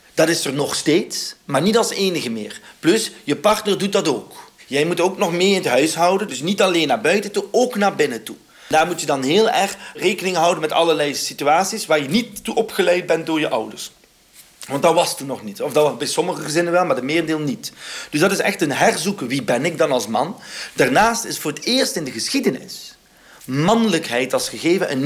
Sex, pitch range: male, 140-195 Hz